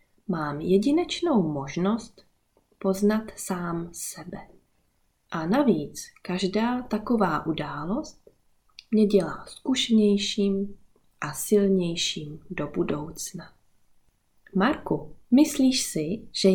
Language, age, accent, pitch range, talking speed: Czech, 20-39, native, 175-225 Hz, 80 wpm